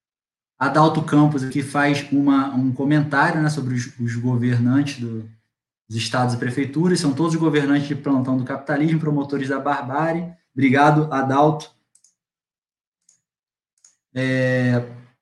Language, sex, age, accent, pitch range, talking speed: Portuguese, male, 20-39, Brazilian, 120-165 Hz, 120 wpm